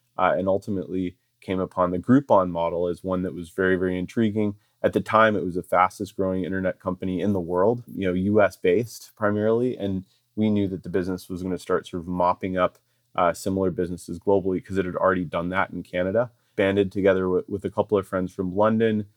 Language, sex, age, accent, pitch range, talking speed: English, male, 30-49, American, 90-105 Hz, 210 wpm